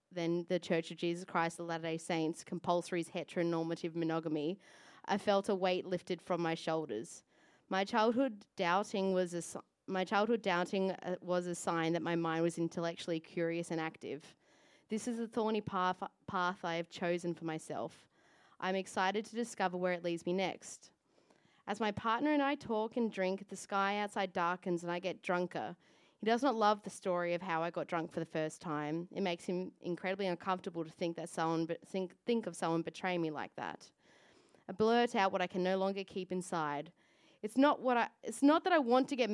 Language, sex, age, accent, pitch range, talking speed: English, female, 20-39, Australian, 170-220 Hz, 200 wpm